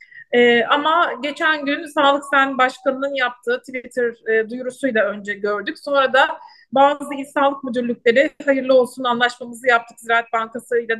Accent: native